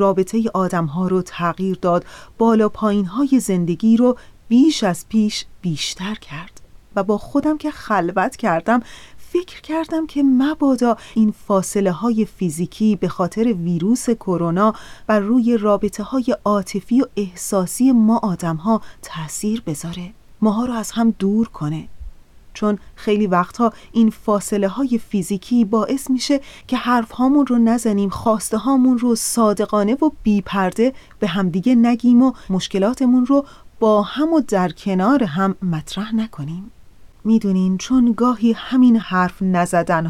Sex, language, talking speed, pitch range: female, Persian, 130 wpm, 185-235 Hz